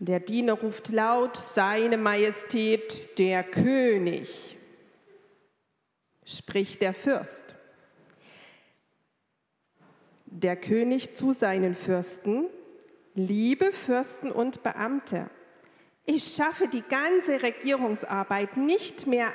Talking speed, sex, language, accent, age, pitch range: 85 wpm, female, German, German, 40-59, 195-310 Hz